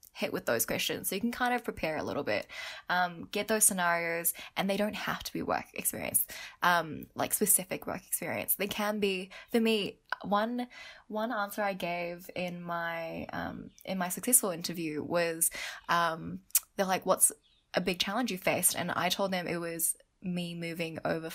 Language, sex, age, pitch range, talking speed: English, female, 10-29, 170-210 Hz, 185 wpm